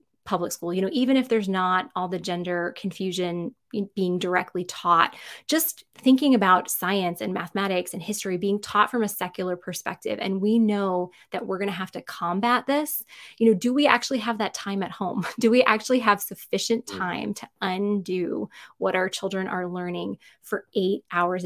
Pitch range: 180-215 Hz